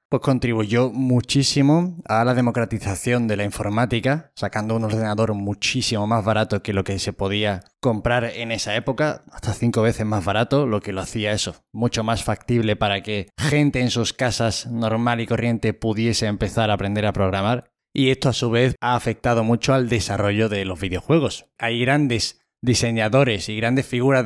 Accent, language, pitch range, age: Spanish, Spanish, 105-125 Hz, 20-39